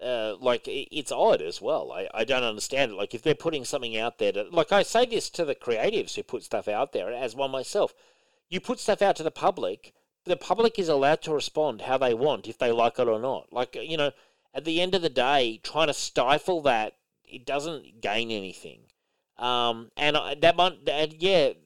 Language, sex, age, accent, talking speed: English, male, 40-59, Australian, 225 wpm